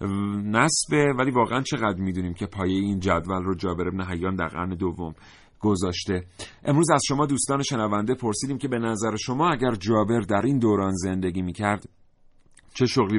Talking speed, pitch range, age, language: 165 wpm, 95-120 Hz, 40-59, Persian